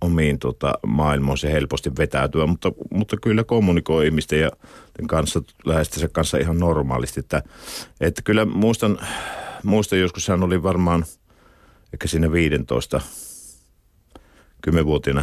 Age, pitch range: 50-69, 70-90 Hz